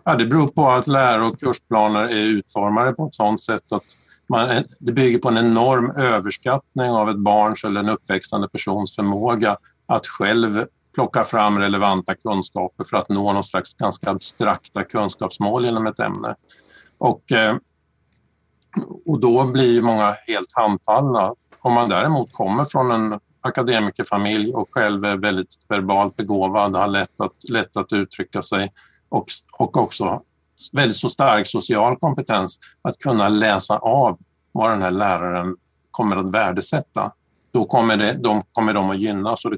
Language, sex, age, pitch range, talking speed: English, male, 50-69, 100-120 Hz, 155 wpm